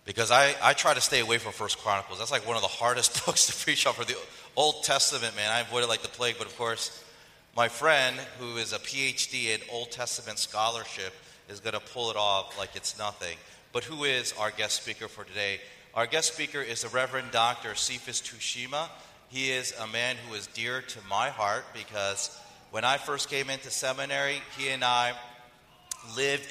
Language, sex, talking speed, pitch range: English, male, 205 wpm, 100-125 Hz